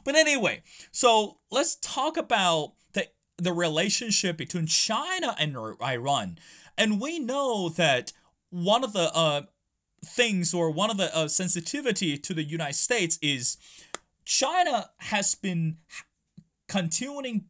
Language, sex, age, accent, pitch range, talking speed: English, male, 30-49, American, 160-210 Hz, 125 wpm